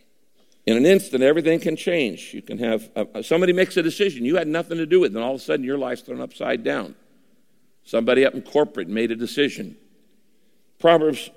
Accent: American